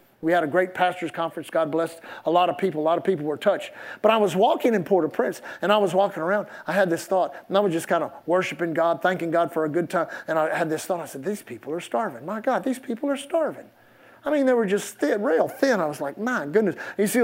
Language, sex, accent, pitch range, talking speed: English, male, American, 160-195 Hz, 270 wpm